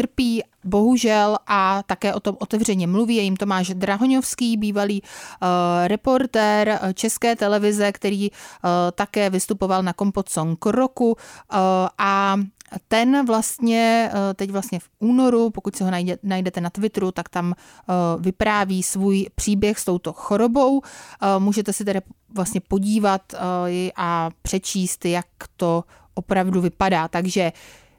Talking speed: 135 wpm